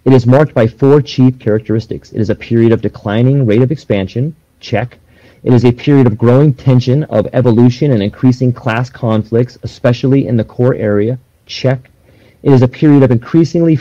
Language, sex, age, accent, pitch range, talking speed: English, male, 30-49, American, 120-150 Hz, 180 wpm